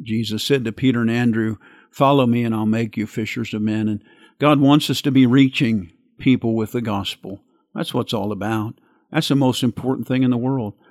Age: 50-69